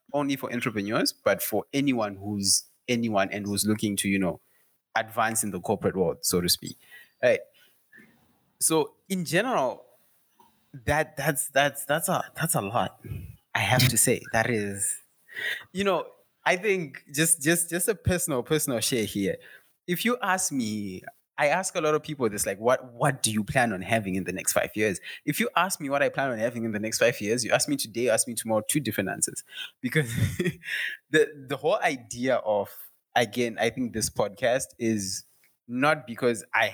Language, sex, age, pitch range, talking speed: English, male, 20-39, 105-145 Hz, 190 wpm